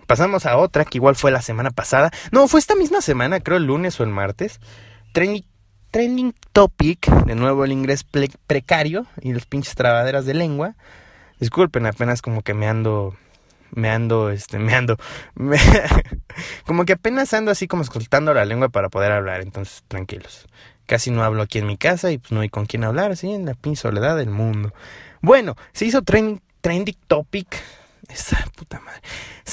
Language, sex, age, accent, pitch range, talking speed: Spanish, male, 20-39, Mexican, 115-180 Hz, 185 wpm